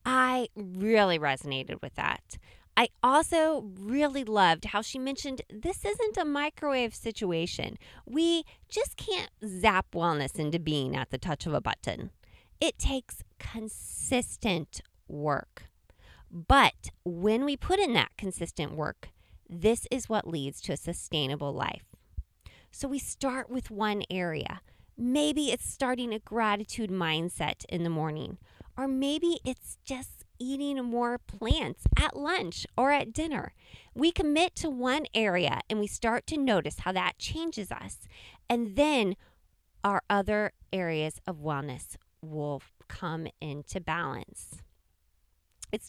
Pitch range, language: 165-255 Hz, English